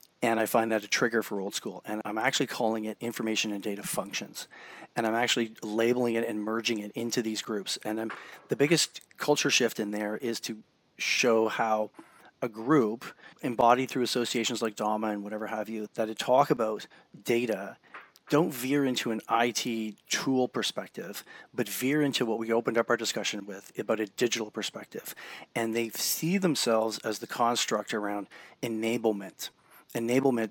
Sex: male